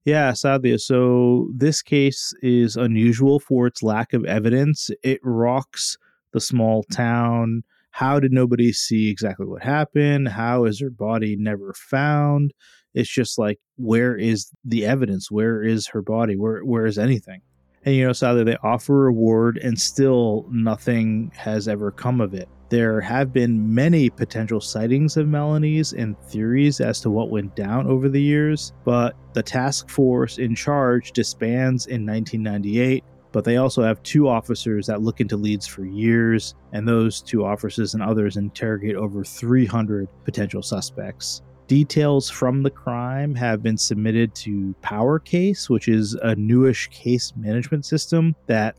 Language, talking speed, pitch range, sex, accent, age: English, 155 wpm, 105-130 Hz, male, American, 30-49